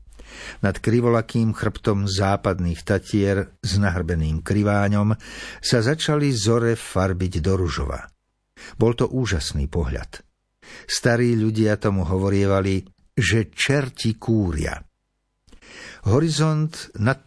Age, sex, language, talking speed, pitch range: 60-79, male, Slovak, 95 wpm, 95-120 Hz